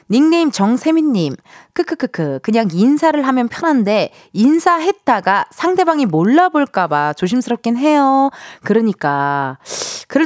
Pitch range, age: 200-310 Hz, 20-39